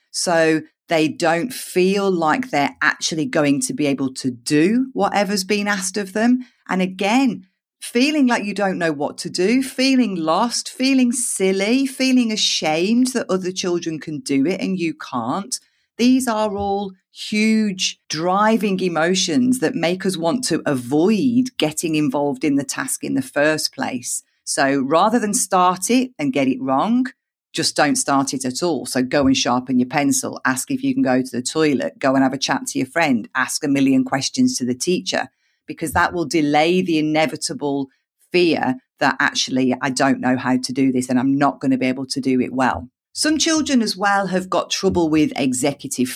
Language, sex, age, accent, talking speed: English, female, 40-59, British, 185 wpm